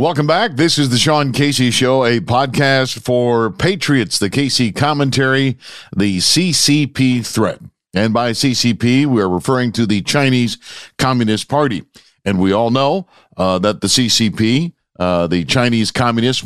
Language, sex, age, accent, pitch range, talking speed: English, male, 50-69, American, 95-125 Hz, 150 wpm